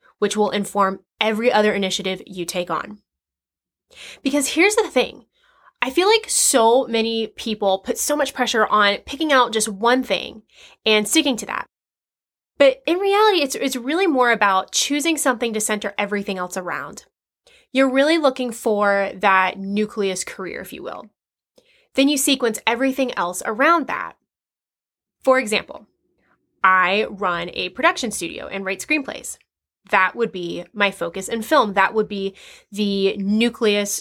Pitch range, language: 195-265 Hz, English